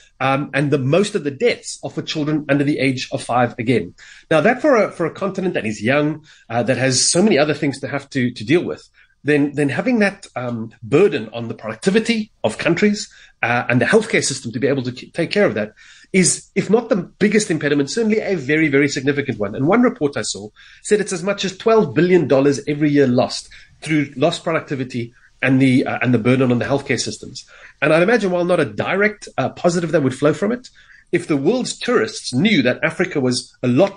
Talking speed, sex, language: 230 wpm, male, English